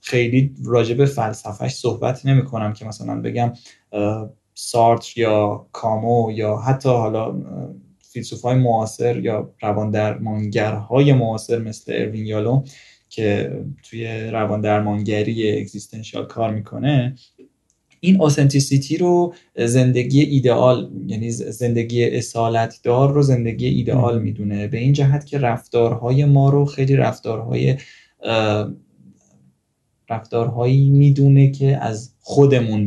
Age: 20-39